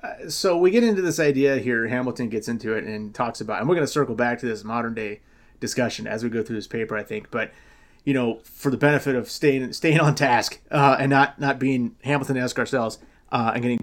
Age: 30-49